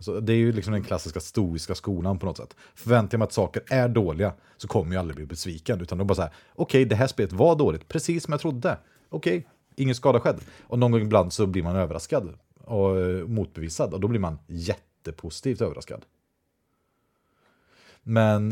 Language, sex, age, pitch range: Swedish, male, 30-49, 90-125 Hz